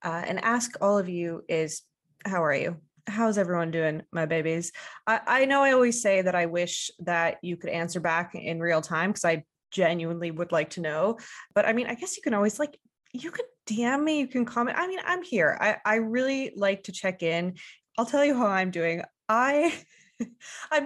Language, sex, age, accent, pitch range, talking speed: English, female, 20-39, American, 175-255 Hz, 215 wpm